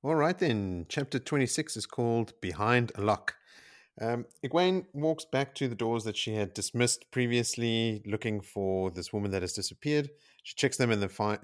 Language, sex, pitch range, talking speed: English, male, 90-115 Hz, 175 wpm